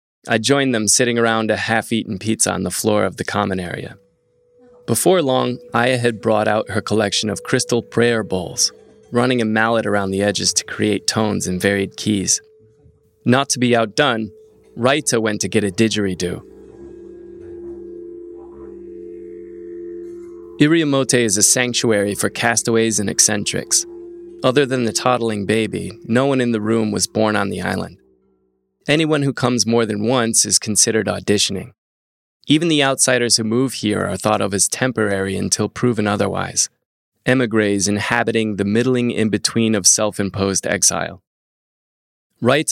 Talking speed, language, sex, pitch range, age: 145 wpm, English, male, 100-130 Hz, 20-39